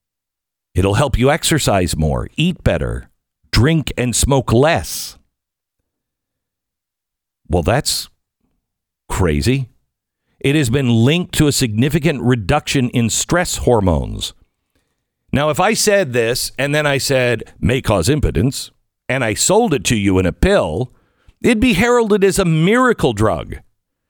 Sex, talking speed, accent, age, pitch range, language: male, 130 wpm, American, 50-69, 95-155 Hz, English